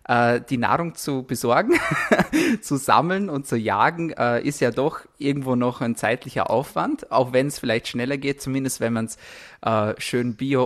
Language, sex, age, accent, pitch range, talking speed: German, male, 20-39, German, 120-140 Hz, 165 wpm